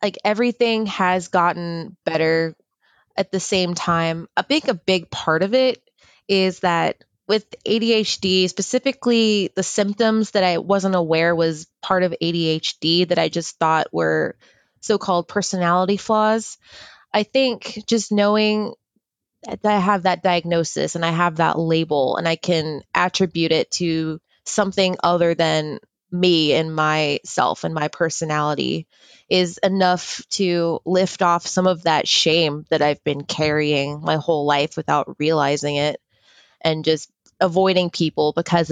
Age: 20-39